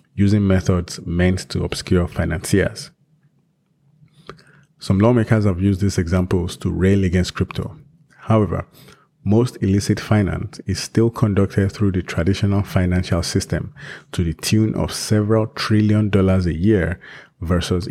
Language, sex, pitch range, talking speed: English, male, 90-110 Hz, 125 wpm